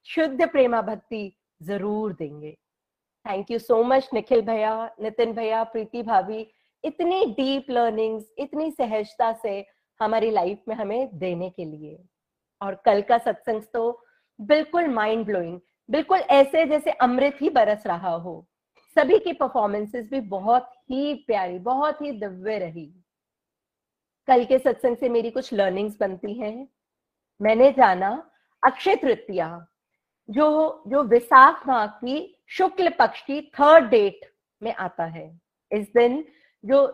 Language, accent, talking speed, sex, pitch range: Hindi, native, 135 wpm, female, 210-280 Hz